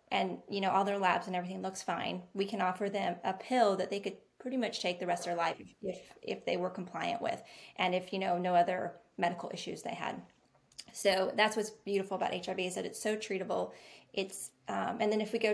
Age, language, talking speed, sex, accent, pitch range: 20-39, English, 235 wpm, female, American, 185-215 Hz